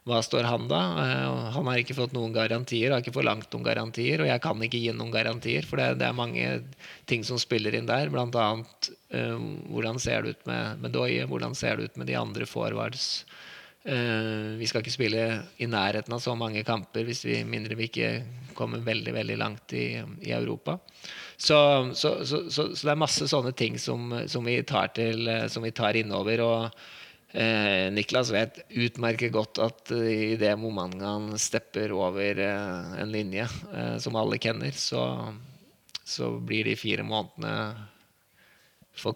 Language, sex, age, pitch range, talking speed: Danish, male, 20-39, 100-120 Hz, 185 wpm